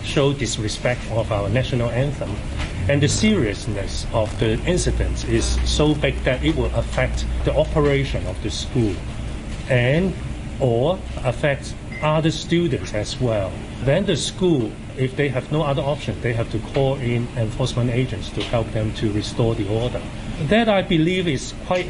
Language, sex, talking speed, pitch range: English, male, 160 wpm, 95-125 Hz